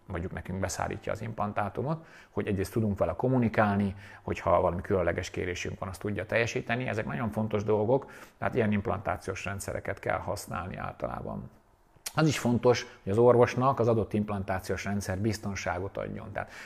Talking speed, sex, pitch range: 155 wpm, male, 95-115 Hz